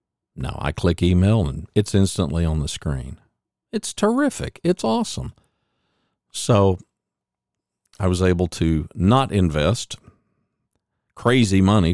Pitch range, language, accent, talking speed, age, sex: 85-110 Hz, English, American, 115 wpm, 50-69, male